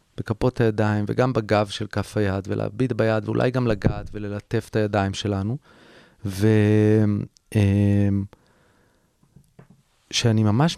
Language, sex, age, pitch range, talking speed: Hebrew, male, 30-49, 110-150 Hz, 100 wpm